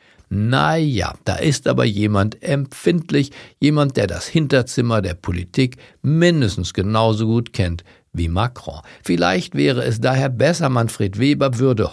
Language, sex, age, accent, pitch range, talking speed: German, male, 60-79, German, 100-145 Hz, 130 wpm